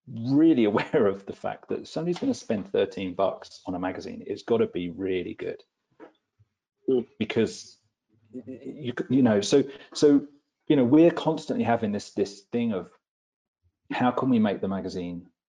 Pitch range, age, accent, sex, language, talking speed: 90-140 Hz, 40-59, British, male, English, 160 wpm